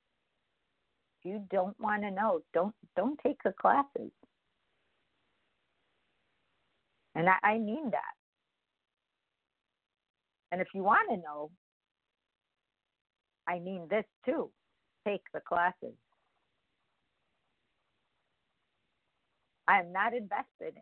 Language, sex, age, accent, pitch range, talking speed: English, female, 50-69, American, 150-205 Hz, 90 wpm